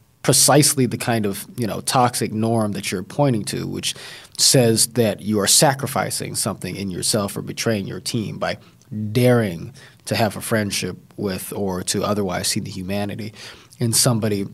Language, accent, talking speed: English, American, 165 wpm